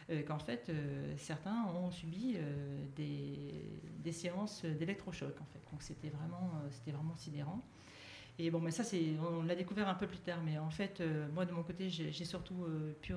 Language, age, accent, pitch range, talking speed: French, 40-59, French, 155-200 Hz, 210 wpm